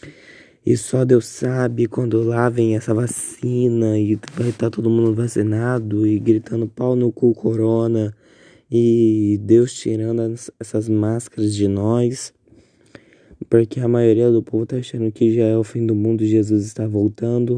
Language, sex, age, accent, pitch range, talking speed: Portuguese, male, 20-39, Brazilian, 110-125 Hz, 155 wpm